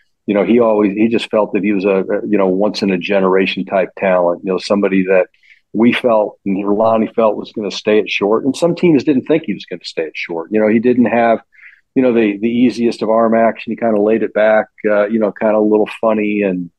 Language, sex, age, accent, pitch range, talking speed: English, male, 50-69, American, 100-110 Hz, 265 wpm